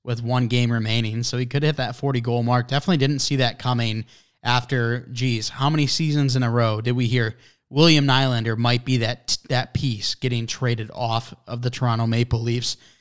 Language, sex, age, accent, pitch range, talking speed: English, male, 20-39, American, 120-135 Hz, 195 wpm